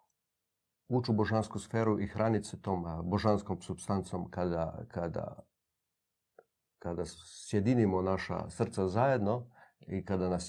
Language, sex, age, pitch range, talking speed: Croatian, male, 40-59, 90-110 Hz, 110 wpm